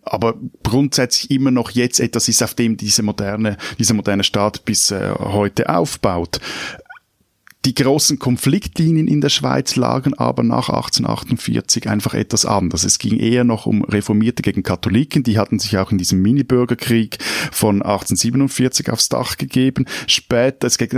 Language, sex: German, male